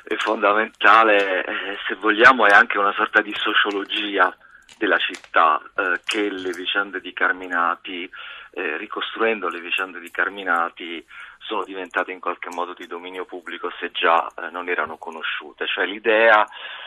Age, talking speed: 40-59, 145 wpm